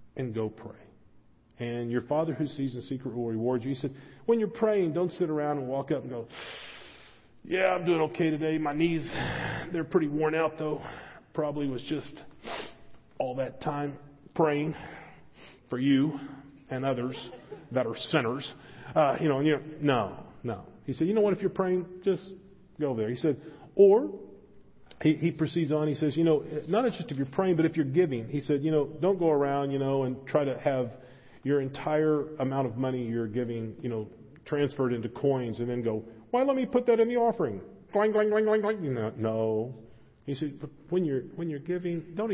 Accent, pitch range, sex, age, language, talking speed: American, 125-170 Hz, male, 40-59, English, 195 wpm